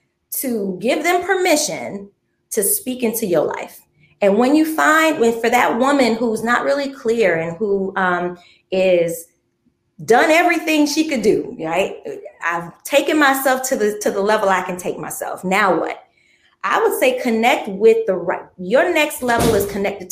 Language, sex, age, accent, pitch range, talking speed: English, female, 30-49, American, 175-280 Hz, 170 wpm